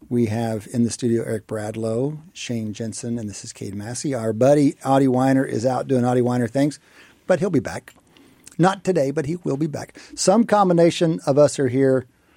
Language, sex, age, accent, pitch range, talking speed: English, male, 50-69, American, 115-155 Hz, 200 wpm